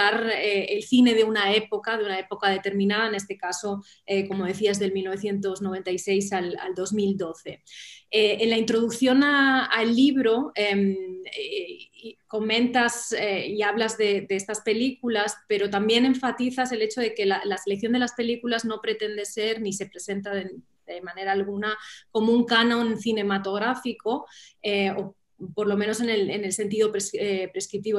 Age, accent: 20-39, Spanish